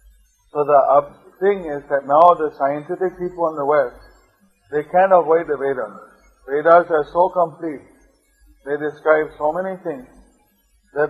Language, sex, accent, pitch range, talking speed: English, male, Indian, 145-170 Hz, 145 wpm